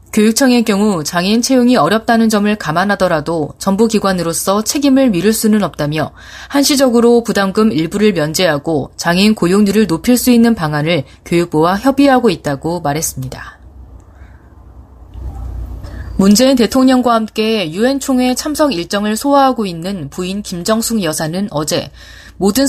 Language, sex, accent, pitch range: Korean, female, native, 160-235 Hz